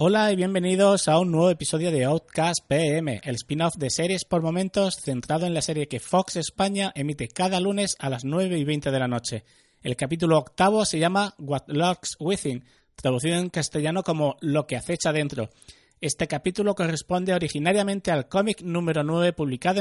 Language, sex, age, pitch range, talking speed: Spanish, male, 30-49, 145-185 Hz, 180 wpm